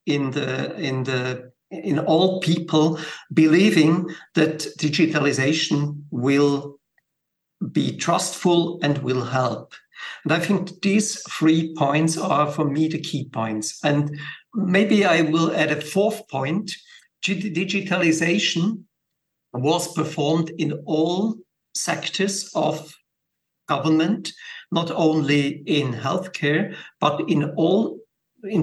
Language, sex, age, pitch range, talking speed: English, male, 60-79, 145-175 Hz, 110 wpm